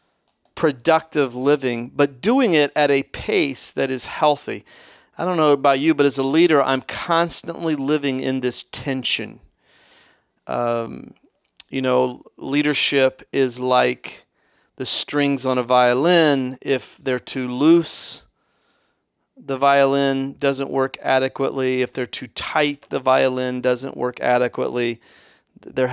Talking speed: 130 wpm